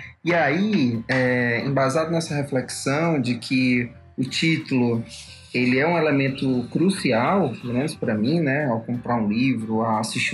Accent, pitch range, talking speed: Brazilian, 130-175 Hz, 140 wpm